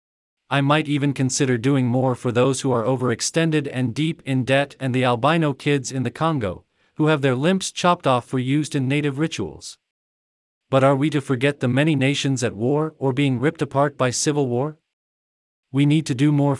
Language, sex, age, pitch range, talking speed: English, male, 40-59, 125-150 Hz, 200 wpm